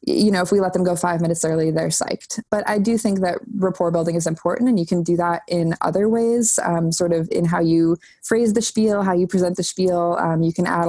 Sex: female